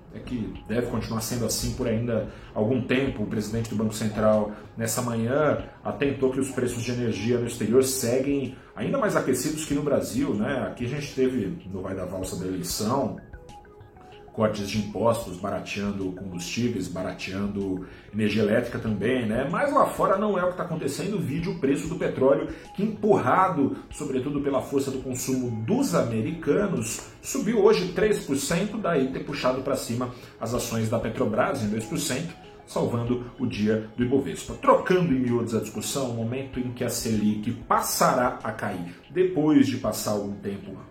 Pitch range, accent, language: 105-140 Hz, Brazilian, Portuguese